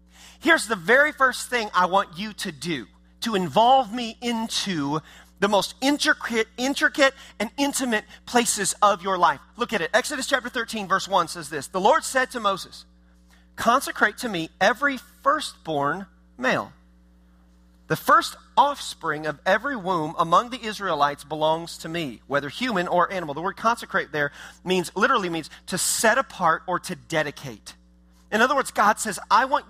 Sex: male